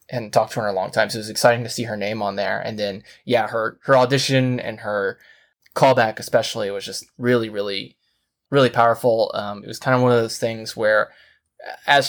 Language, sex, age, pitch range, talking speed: English, male, 20-39, 115-140 Hz, 225 wpm